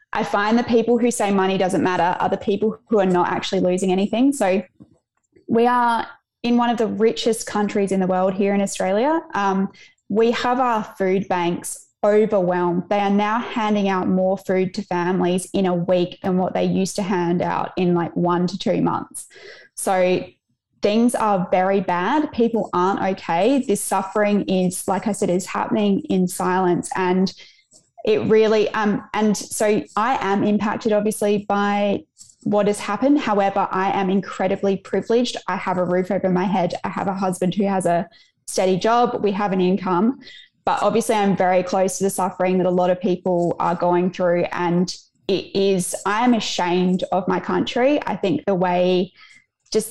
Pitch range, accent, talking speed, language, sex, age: 185-215 Hz, Australian, 185 wpm, English, female, 20-39